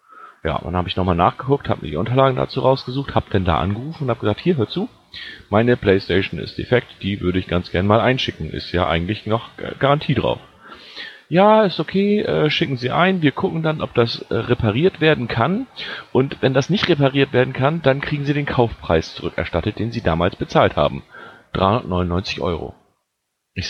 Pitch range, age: 95-135 Hz, 40-59